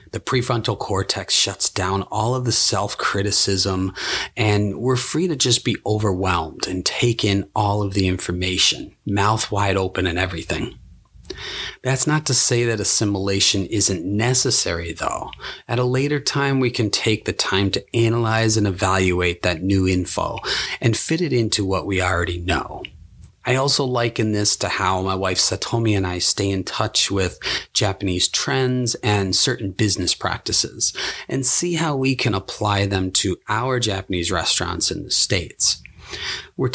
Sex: male